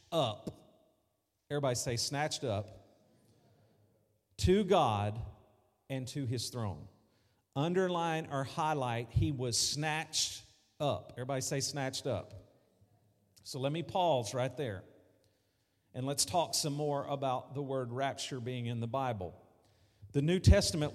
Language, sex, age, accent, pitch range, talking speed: English, male, 50-69, American, 105-145 Hz, 125 wpm